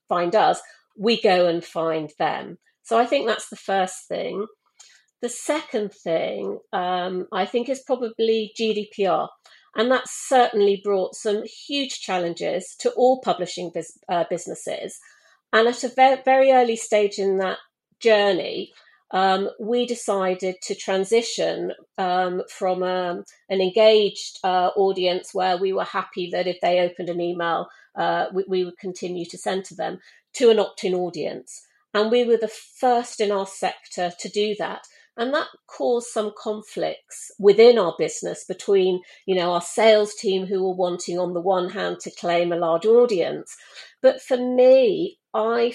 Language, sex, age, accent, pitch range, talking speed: English, female, 40-59, British, 185-235 Hz, 155 wpm